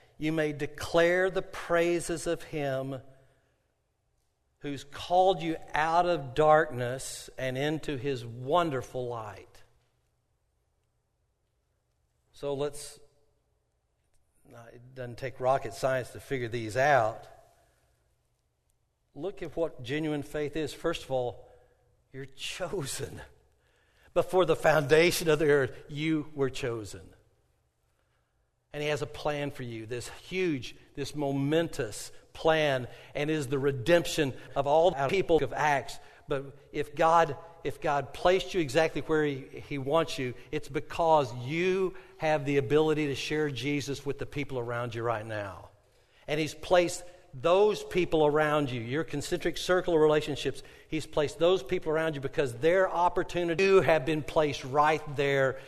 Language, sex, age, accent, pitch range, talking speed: English, male, 60-79, American, 130-160 Hz, 135 wpm